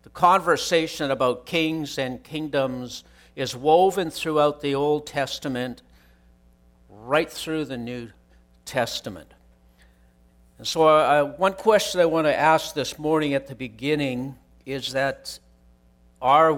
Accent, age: American, 60-79